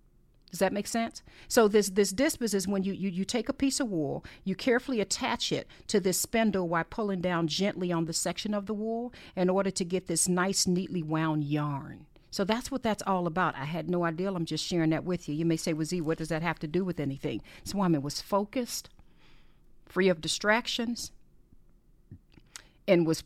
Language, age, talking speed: English, 50-69, 215 wpm